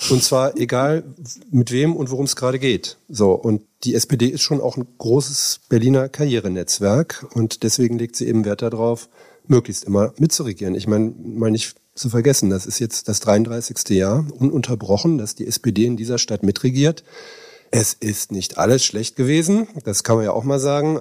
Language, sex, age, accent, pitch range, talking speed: German, male, 40-59, German, 105-130 Hz, 185 wpm